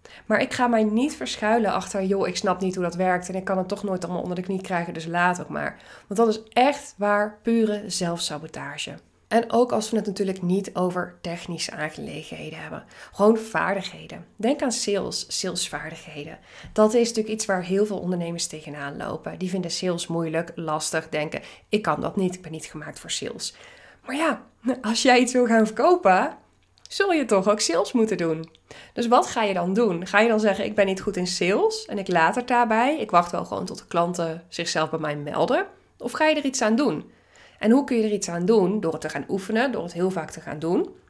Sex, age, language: female, 20-39, Dutch